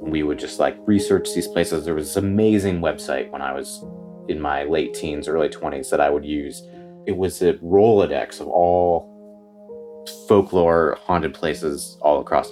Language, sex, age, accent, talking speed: English, male, 30-49, American, 175 wpm